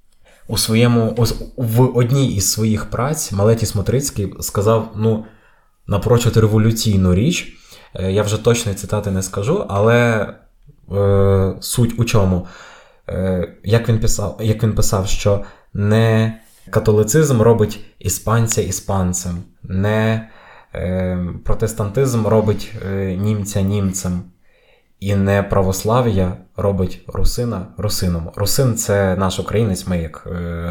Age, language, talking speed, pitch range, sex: 20-39, Ukrainian, 115 wpm, 95-115 Hz, male